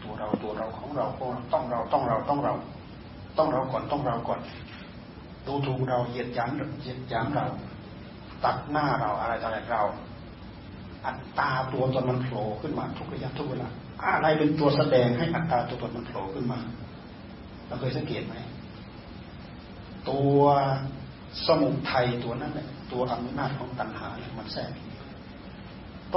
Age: 30-49